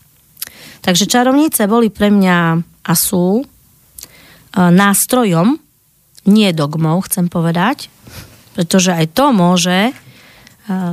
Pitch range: 170-200 Hz